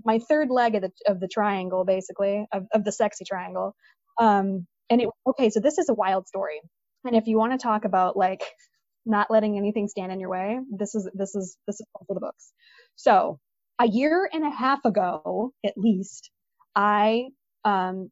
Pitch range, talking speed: 195-240 Hz, 195 wpm